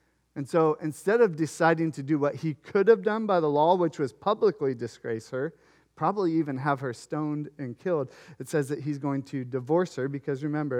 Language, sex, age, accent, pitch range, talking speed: English, male, 40-59, American, 130-170 Hz, 205 wpm